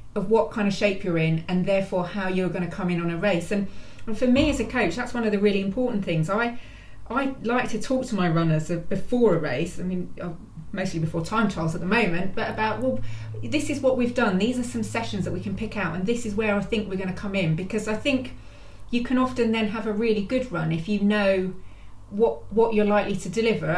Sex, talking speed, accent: female, 255 wpm, British